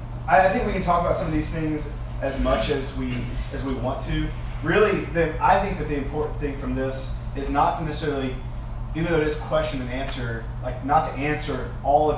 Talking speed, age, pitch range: 220 wpm, 30-49, 125-145 Hz